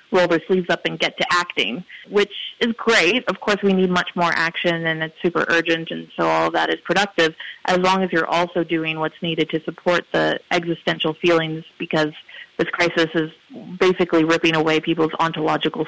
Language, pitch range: English, 160-180 Hz